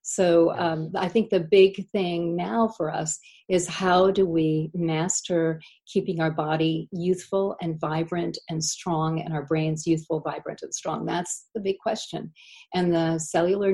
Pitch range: 165-190 Hz